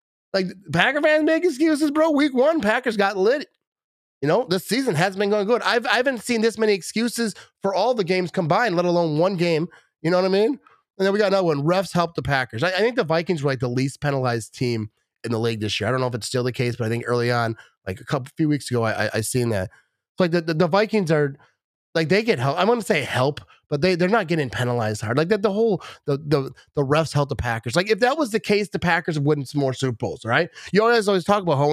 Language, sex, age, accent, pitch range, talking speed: English, male, 30-49, American, 145-225 Hz, 280 wpm